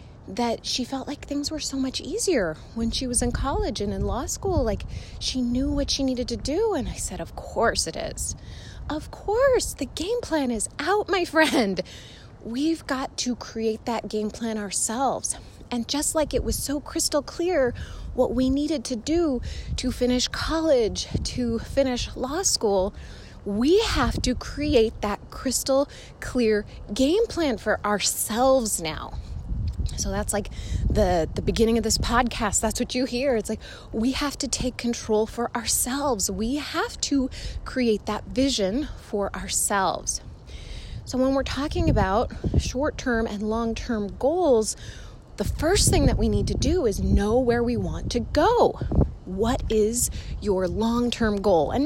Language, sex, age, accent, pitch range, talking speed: English, female, 20-39, American, 225-285 Hz, 165 wpm